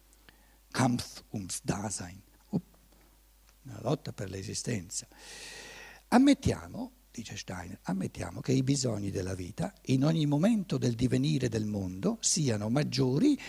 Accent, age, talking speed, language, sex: native, 60-79, 110 wpm, Italian, male